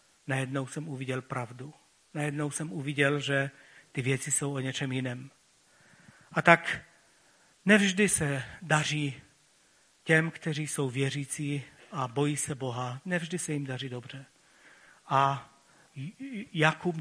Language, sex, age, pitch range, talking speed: Czech, male, 40-59, 140-170 Hz, 120 wpm